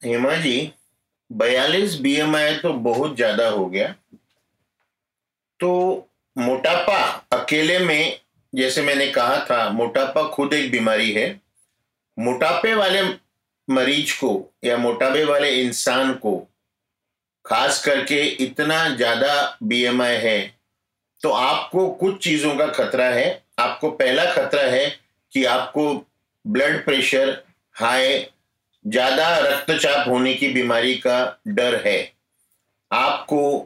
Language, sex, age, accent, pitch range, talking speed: Hindi, male, 50-69, native, 120-150 Hz, 110 wpm